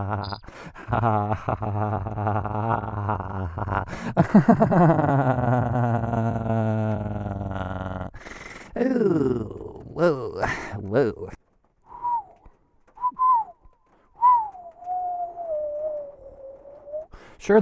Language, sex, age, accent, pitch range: English, male, 20-39, American, 100-155 Hz